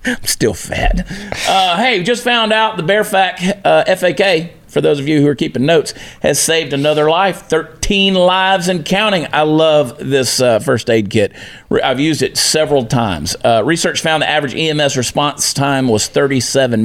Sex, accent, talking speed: male, American, 180 wpm